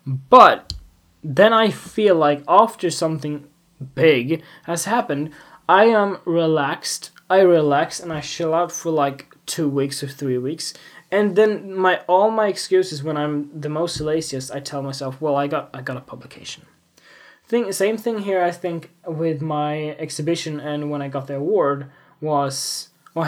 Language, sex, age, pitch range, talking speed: English, male, 10-29, 145-175 Hz, 165 wpm